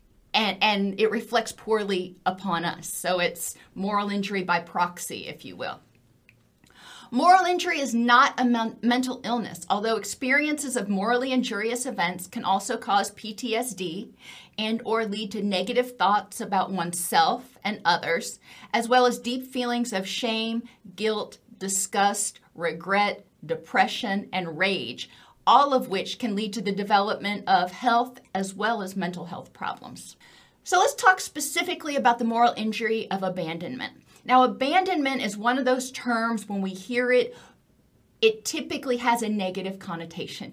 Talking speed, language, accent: 145 wpm, English, American